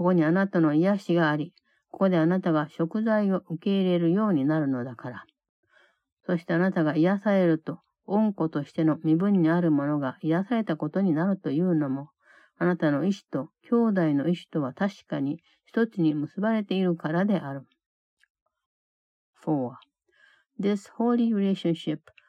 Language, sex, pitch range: Japanese, female, 150-195 Hz